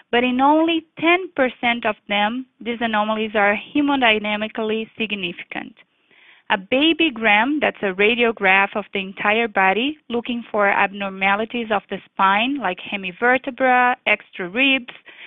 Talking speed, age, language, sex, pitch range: 120 wpm, 20-39, English, female, 200-260 Hz